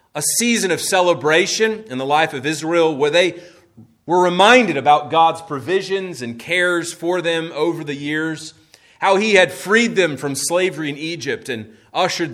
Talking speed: 165 wpm